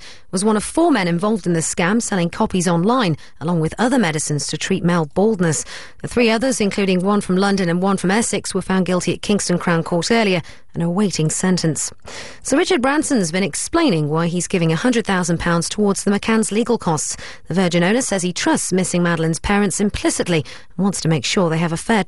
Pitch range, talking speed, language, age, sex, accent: 165-215 Hz, 205 wpm, English, 40-59, female, British